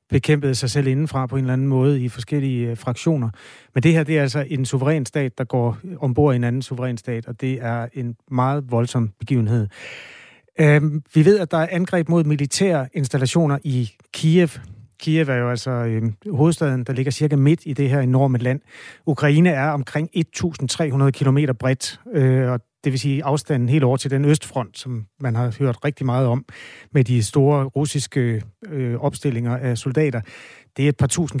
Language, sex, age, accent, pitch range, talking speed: Danish, male, 30-49, native, 125-150 Hz, 185 wpm